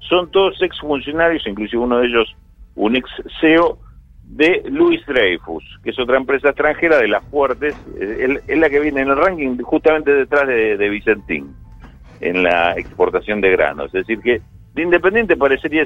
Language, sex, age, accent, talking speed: Spanish, male, 50-69, Argentinian, 170 wpm